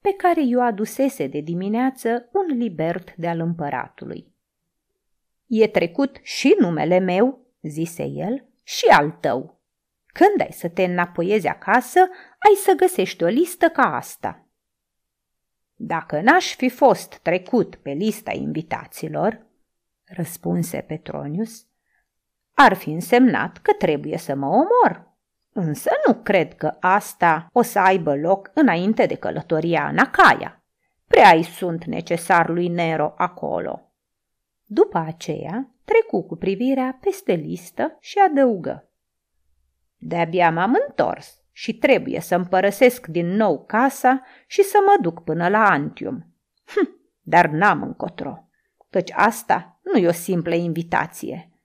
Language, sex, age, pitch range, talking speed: Romanian, female, 30-49, 170-265 Hz, 125 wpm